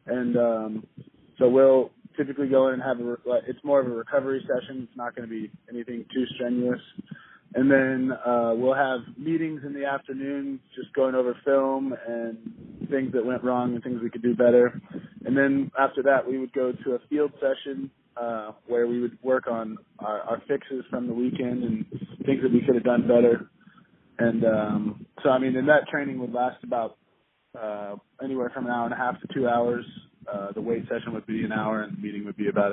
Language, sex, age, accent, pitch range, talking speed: English, male, 20-39, American, 115-135 Hz, 210 wpm